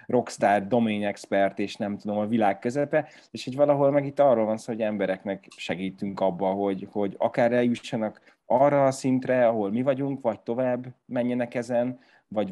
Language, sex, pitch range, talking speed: Hungarian, male, 105-130 Hz, 170 wpm